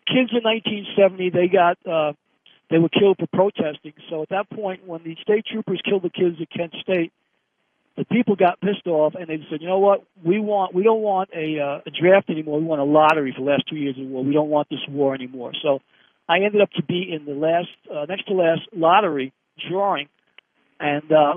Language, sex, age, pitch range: English, male, 50-69, 165-225 Hz